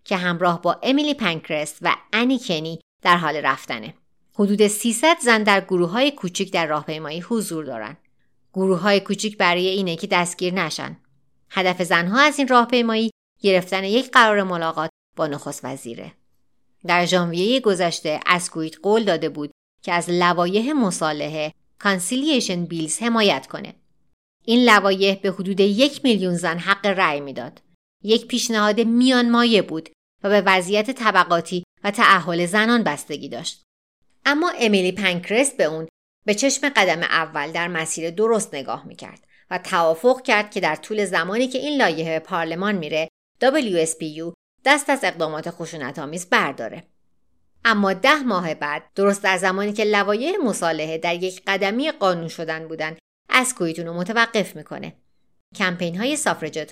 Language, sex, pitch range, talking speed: Persian, female, 165-220 Hz, 145 wpm